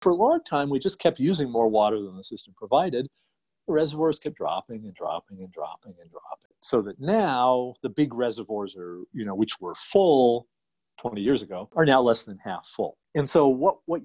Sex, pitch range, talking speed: male, 105-160 Hz, 210 wpm